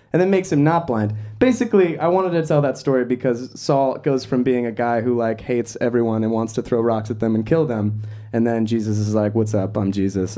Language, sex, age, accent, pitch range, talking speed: English, male, 20-39, American, 110-145 Hz, 250 wpm